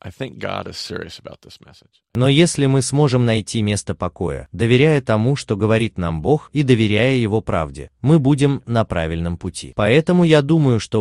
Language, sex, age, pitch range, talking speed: Russian, male, 30-49, 90-135 Hz, 140 wpm